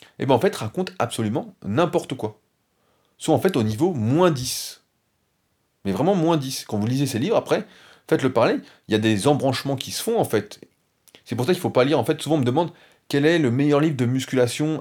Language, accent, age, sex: French, French, 30-49, male